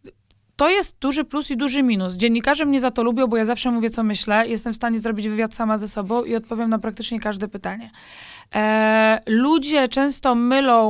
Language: Polish